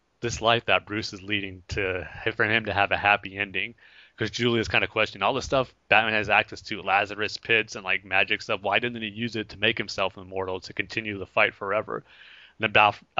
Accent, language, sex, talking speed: American, English, male, 220 wpm